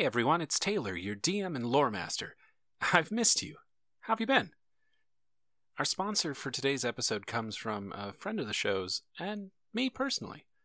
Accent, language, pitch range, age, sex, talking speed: American, English, 115-170 Hz, 40-59, male, 175 wpm